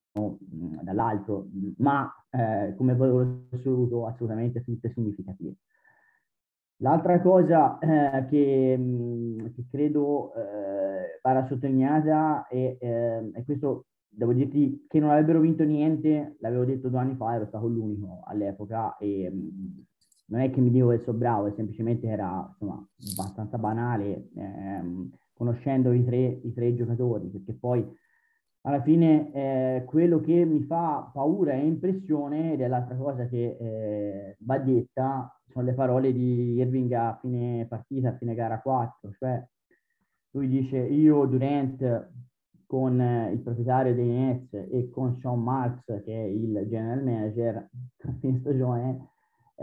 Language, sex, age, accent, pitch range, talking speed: Italian, male, 30-49, native, 110-135 Hz, 135 wpm